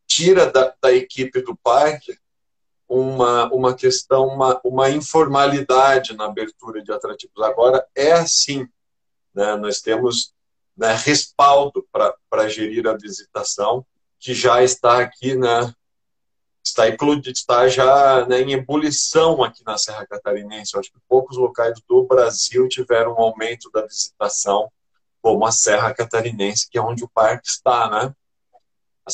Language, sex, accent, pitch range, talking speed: Portuguese, male, Brazilian, 115-155 Hz, 140 wpm